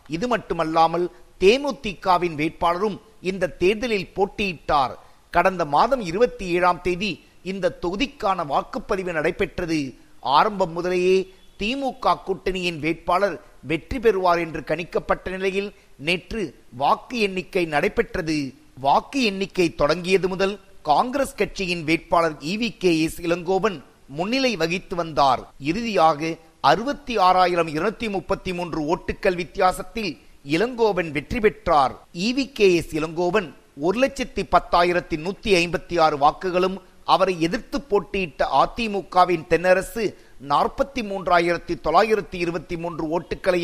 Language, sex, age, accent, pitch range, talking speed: Tamil, male, 50-69, native, 165-200 Hz, 80 wpm